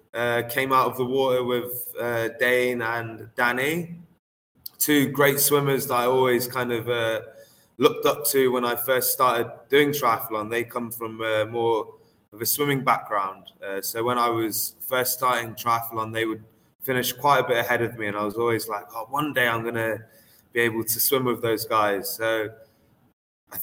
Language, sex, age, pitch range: Thai, male, 20-39, 115-130 Hz